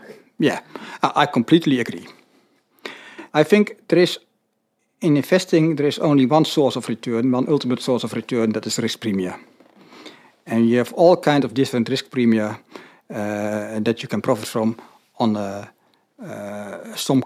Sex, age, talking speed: male, 60-79, 150 wpm